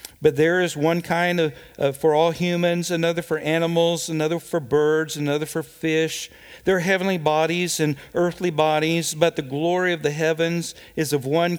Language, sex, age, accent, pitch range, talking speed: English, male, 50-69, American, 145-185 Hz, 175 wpm